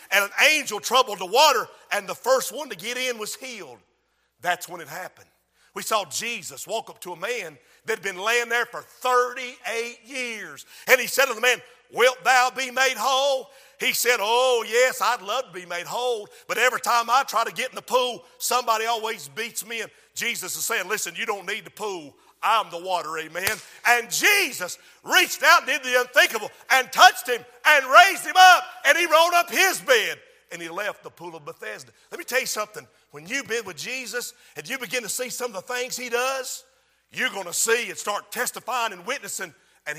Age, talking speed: 50-69, 215 wpm